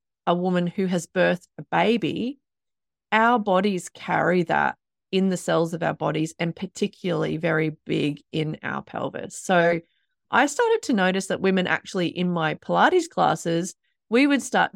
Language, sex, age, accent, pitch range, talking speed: English, female, 30-49, Australian, 170-210 Hz, 160 wpm